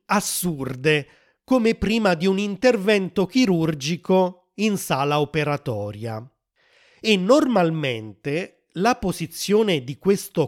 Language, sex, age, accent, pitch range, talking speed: Italian, male, 30-49, native, 140-200 Hz, 90 wpm